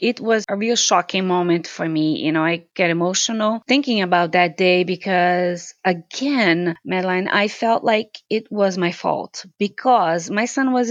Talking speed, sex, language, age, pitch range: 170 wpm, female, English, 20-39, 190-255 Hz